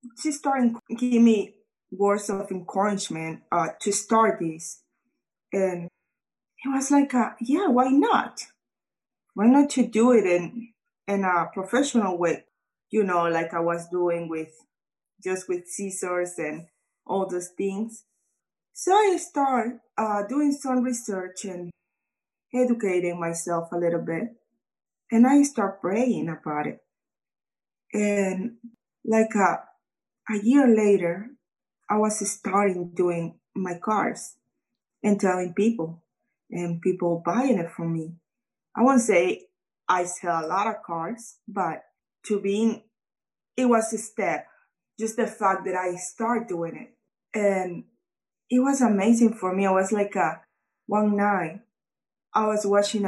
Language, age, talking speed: English, 20-39, 140 wpm